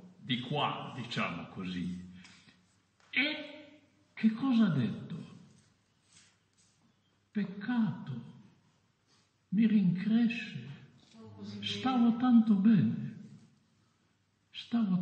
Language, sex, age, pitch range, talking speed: Italian, male, 60-79, 145-225 Hz, 65 wpm